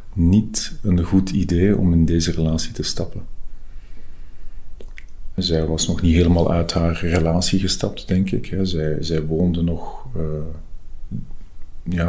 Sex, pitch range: male, 80-90 Hz